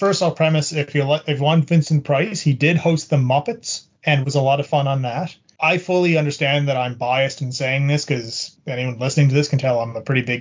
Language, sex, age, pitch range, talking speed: English, male, 30-49, 130-155 Hz, 240 wpm